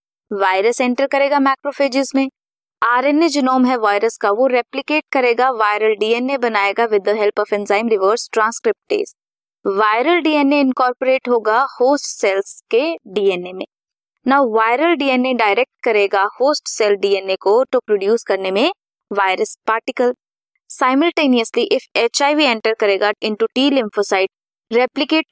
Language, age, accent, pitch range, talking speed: Hindi, 20-39, native, 215-280 Hz, 125 wpm